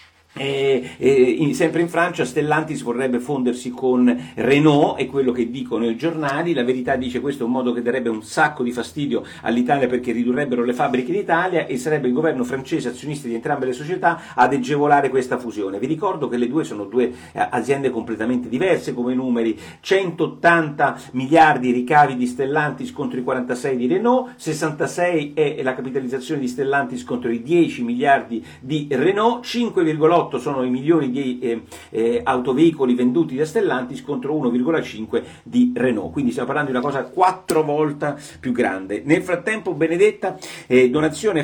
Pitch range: 125-170 Hz